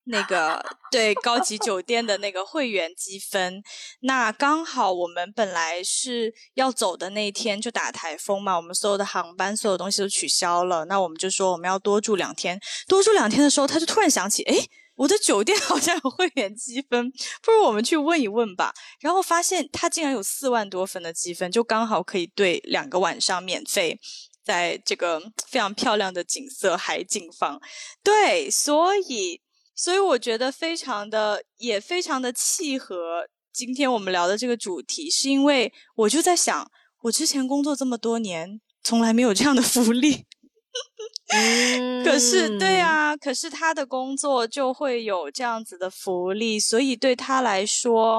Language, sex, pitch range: Chinese, female, 200-285 Hz